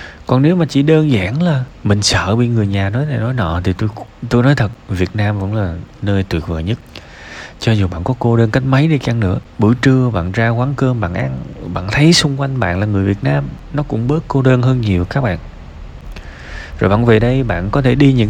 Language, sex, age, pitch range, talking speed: Vietnamese, male, 20-39, 90-125 Hz, 245 wpm